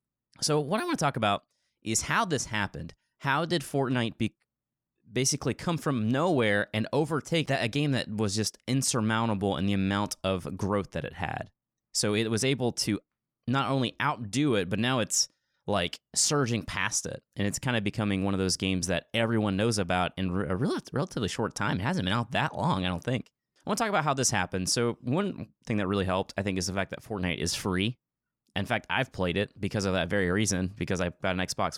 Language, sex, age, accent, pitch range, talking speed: English, male, 20-39, American, 95-120 Hz, 215 wpm